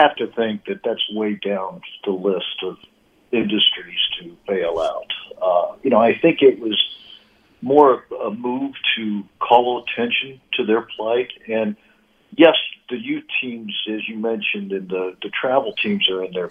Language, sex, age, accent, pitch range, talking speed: English, male, 60-79, American, 105-160 Hz, 170 wpm